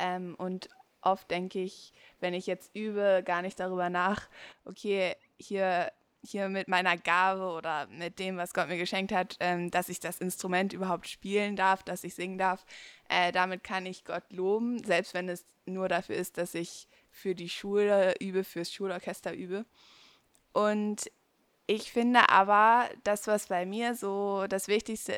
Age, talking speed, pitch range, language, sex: 20-39, 170 wpm, 180-205 Hz, German, female